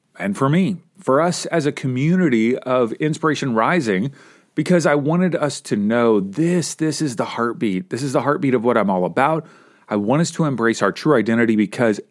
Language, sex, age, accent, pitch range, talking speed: English, male, 40-59, American, 130-180 Hz, 200 wpm